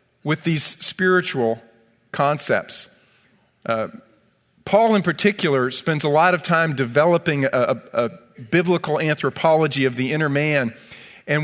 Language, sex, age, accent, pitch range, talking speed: English, male, 40-59, American, 145-180 Hz, 125 wpm